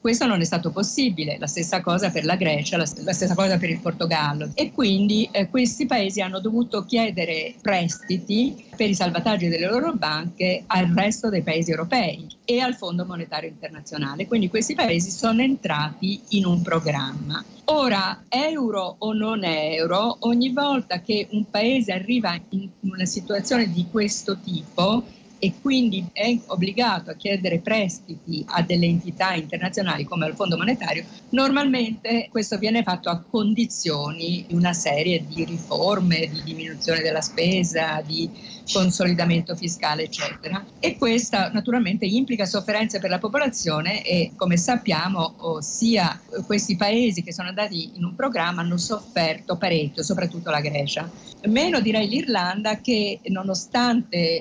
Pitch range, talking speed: 170-220 Hz, 145 wpm